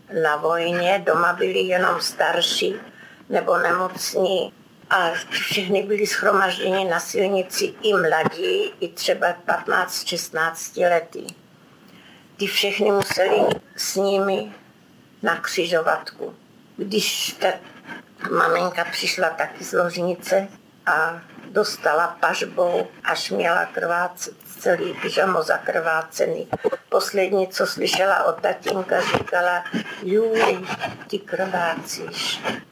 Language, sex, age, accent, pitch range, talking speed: Czech, female, 50-69, native, 180-205 Hz, 95 wpm